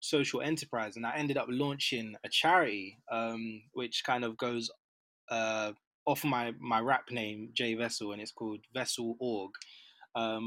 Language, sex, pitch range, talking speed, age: English, male, 110-130 Hz, 160 wpm, 20-39